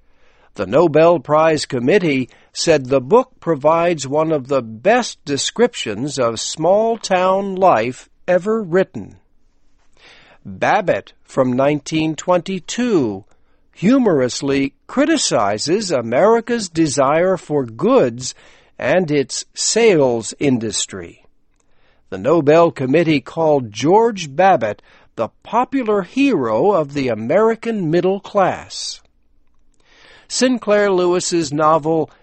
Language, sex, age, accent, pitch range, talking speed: English, male, 60-79, American, 135-195 Hz, 90 wpm